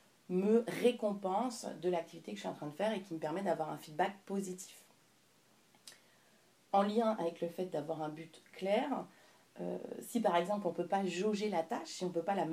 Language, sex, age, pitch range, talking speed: French, female, 40-59, 175-220 Hz, 215 wpm